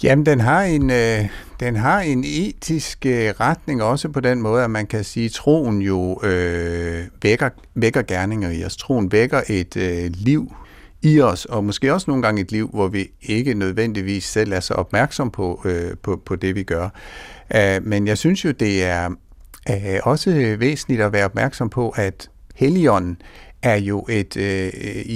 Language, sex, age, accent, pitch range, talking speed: Danish, male, 60-79, native, 100-130 Hz, 185 wpm